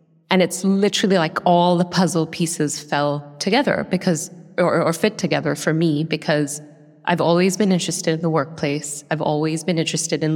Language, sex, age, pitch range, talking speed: English, female, 20-39, 150-175 Hz, 175 wpm